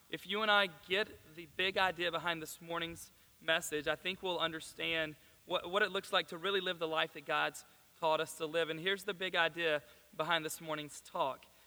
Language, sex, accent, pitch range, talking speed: English, male, American, 160-190 Hz, 210 wpm